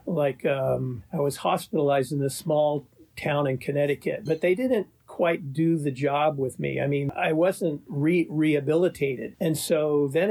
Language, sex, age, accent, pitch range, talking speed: English, male, 50-69, American, 140-175 Hz, 165 wpm